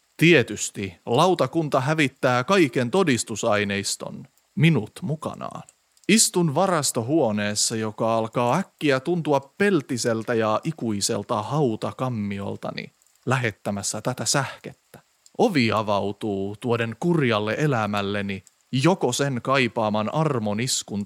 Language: Finnish